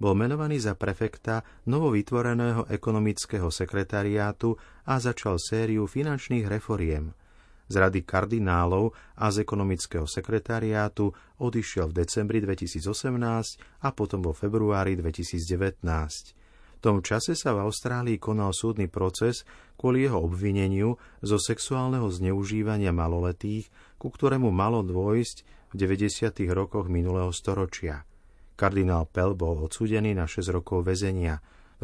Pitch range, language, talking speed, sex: 90-115 Hz, Slovak, 115 wpm, male